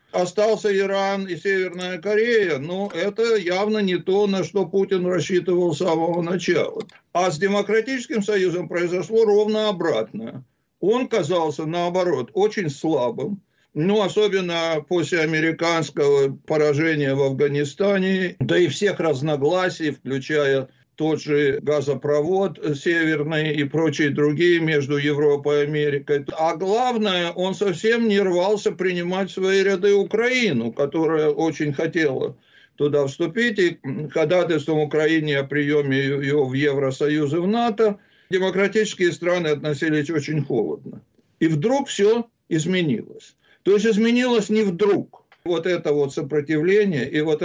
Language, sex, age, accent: Russian, male, 60-79, native